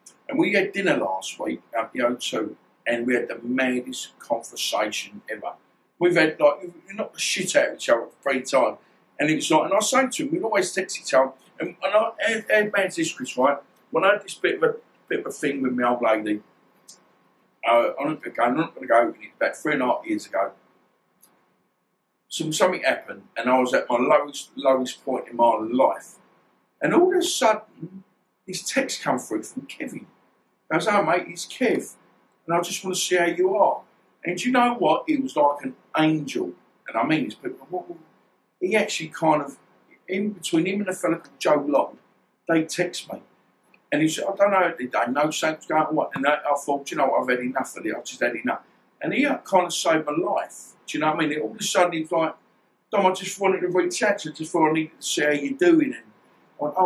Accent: British